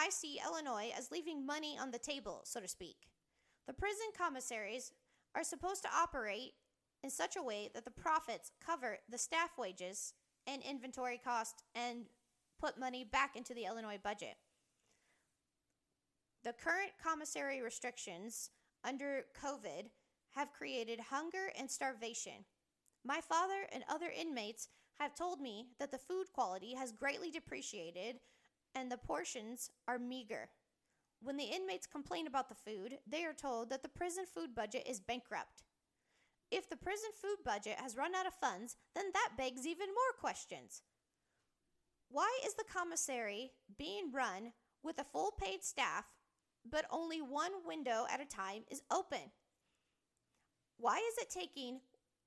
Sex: female